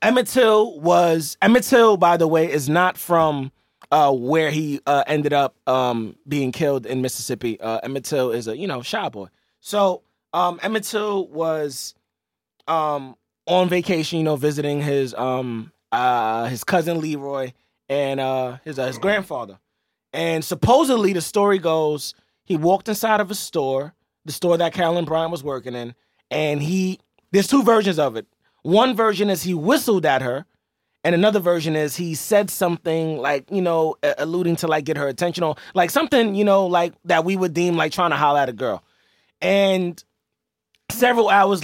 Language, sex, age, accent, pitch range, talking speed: English, male, 20-39, American, 140-190 Hz, 175 wpm